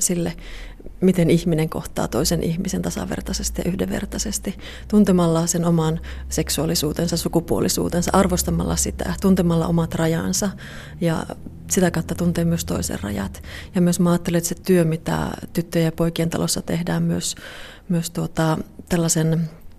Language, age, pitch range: Finnish, 30-49, 160-175 Hz